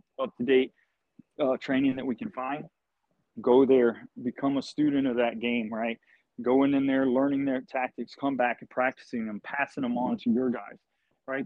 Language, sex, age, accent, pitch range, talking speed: English, male, 30-49, American, 125-160 Hz, 180 wpm